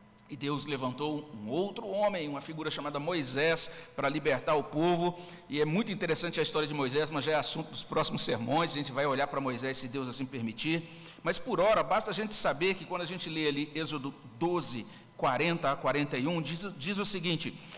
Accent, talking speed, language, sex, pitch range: Brazilian, 205 wpm, Portuguese, male, 160-215 Hz